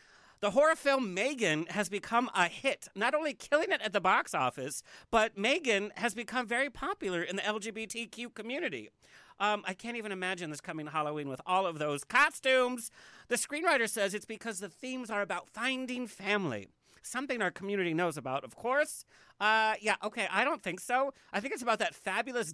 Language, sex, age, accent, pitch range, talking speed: English, male, 40-59, American, 180-255 Hz, 185 wpm